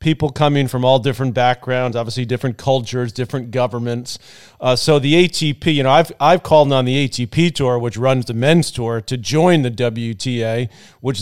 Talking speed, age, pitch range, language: 180 wpm, 40-59, 125-145 Hz, English